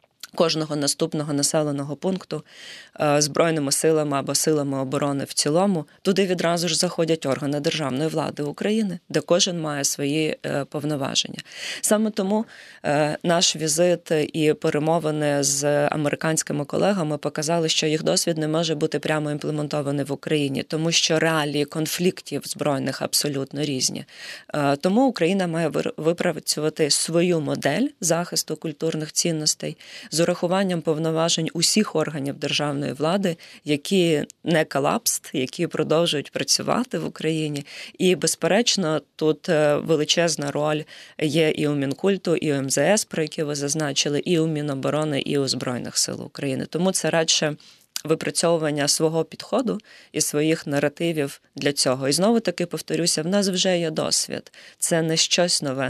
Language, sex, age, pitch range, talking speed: Ukrainian, female, 20-39, 145-170 Hz, 130 wpm